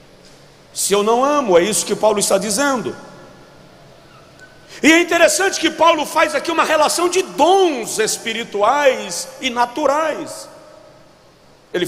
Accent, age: Brazilian, 60-79